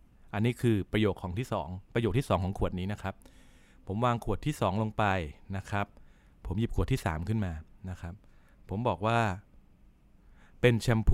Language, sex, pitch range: Thai, male, 95-115 Hz